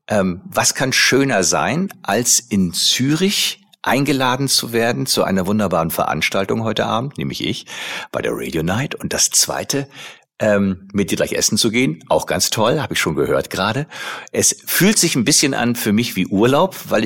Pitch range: 95-130 Hz